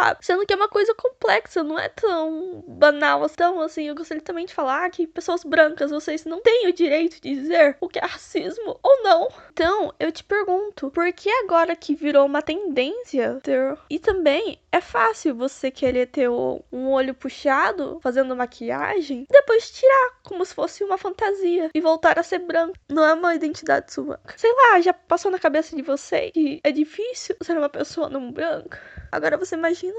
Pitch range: 300-395 Hz